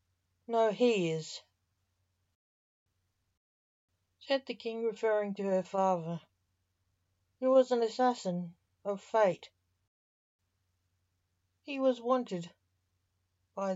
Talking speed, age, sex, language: 85 wpm, 60-79, female, English